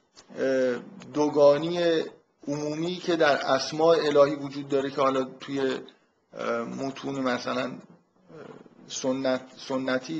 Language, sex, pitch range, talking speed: Persian, male, 130-155 Hz, 90 wpm